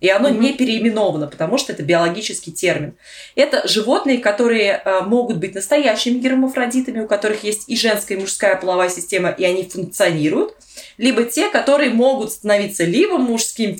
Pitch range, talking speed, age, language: 190-255 Hz, 150 wpm, 20-39, Russian